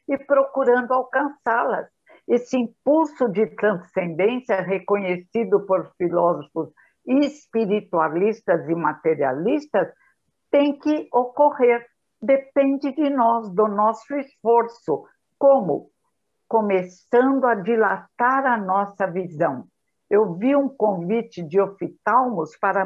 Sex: female